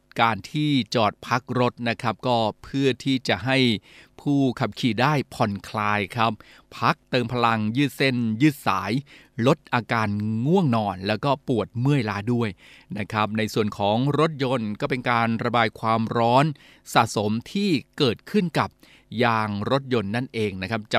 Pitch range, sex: 110-140 Hz, male